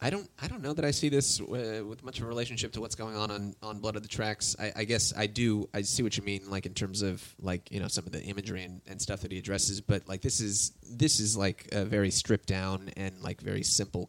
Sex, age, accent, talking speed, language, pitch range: male, 20-39, American, 285 wpm, English, 95-110 Hz